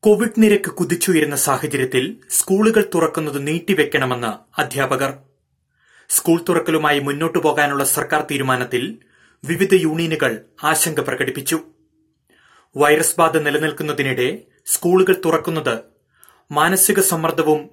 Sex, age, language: male, 30-49, Malayalam